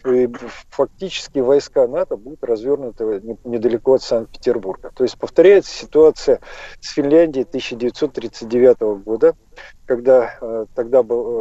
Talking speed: 105 wpm